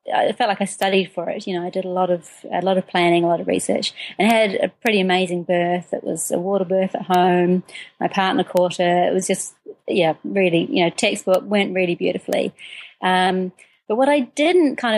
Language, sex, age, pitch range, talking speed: English, female, 30-49, 185-235 Hz, 225 wpm